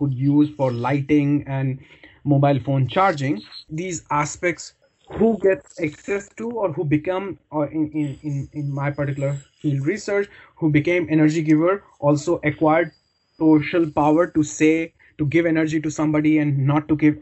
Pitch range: 150-180 Hz